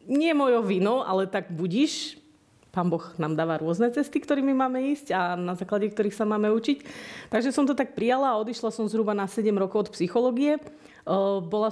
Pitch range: 190-230 Hz